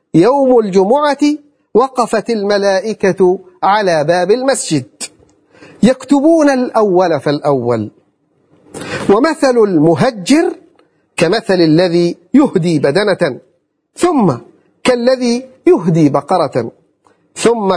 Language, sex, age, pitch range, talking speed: Arabic, male, 50-69, 160-250 Hz, 70 wpm